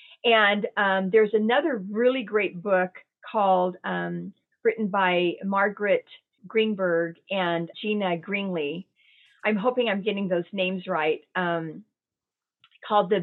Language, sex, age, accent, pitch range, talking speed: English, female, 40-59, American, 185-240 Hz, 120 wpm